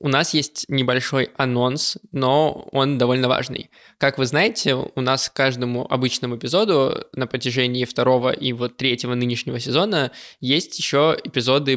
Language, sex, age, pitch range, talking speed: Russian, male, 20-39, 125-140 Hz, 150 wpm